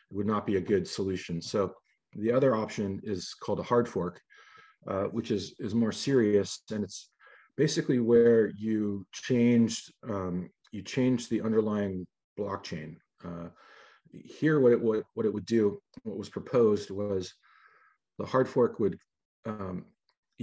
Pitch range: 100-120 Hz